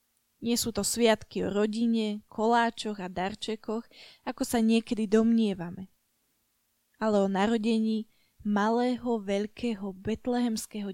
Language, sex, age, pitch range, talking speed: Slovak, female, 20-39, 205-235 Hz, 105 wpm